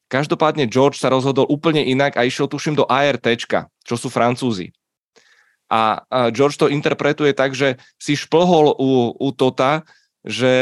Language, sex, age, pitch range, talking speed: Czech, male, 20-39, 115-140 Hz, 145 wpm